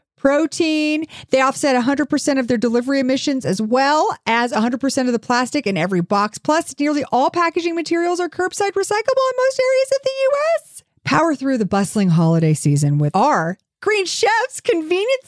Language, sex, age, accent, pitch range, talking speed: English, female, 40-59, American, 210-310 Hz, 170 wpm